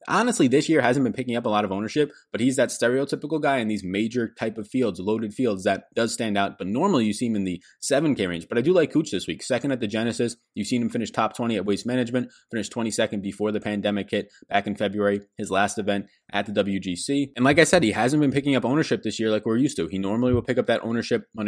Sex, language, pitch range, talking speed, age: male, English, 100-115 Hz, 275 wpm, 20-39